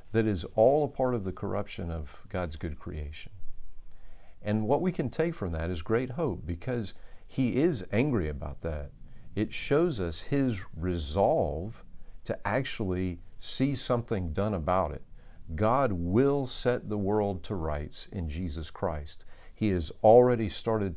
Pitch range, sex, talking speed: 80-105 Hz, male, 155 wpm